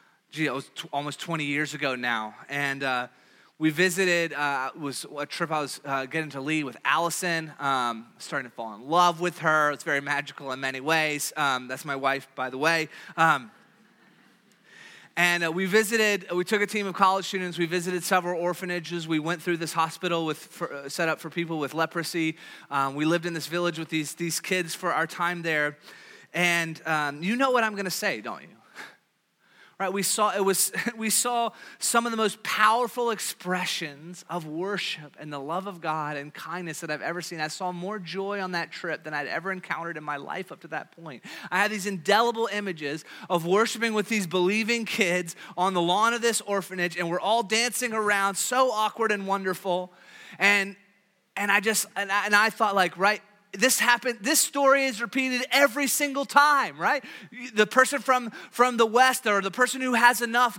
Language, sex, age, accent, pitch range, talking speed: English, male, 30-49, American, 165-235 Hz, 205 wpm